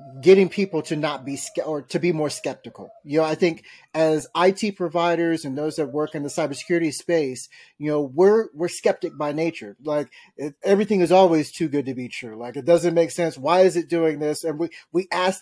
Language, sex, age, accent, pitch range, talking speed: English, male, 30-49, American, 150-180 Hz, 215 wpm